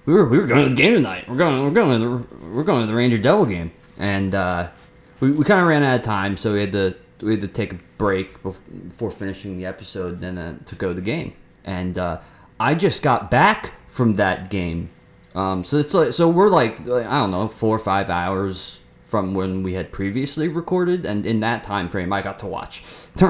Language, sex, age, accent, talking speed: English, male, 30-49, American, 230 wpm